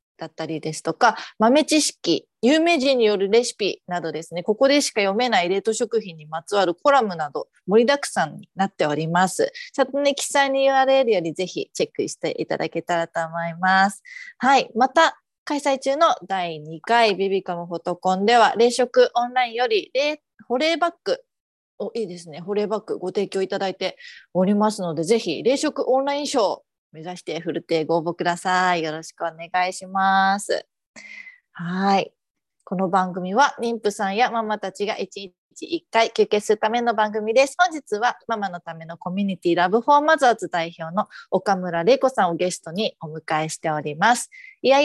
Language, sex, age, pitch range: Japanese, female, 30-49, 180-265 Hz